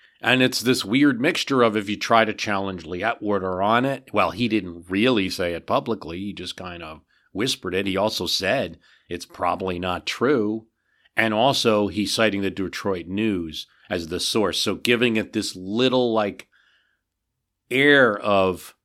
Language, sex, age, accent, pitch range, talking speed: English, male, 40-59, American, 90-115 Hz, 170 wpm